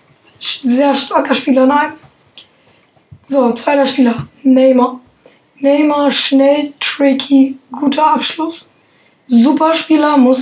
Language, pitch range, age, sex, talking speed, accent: German, 260-285 Hz, 10-29, female, 90 wpm, German